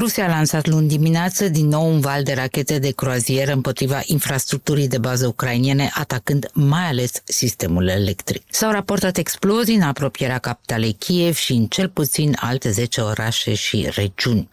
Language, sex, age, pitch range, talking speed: Romanian, female, 50-69, 115-155 Hz, 160 wpm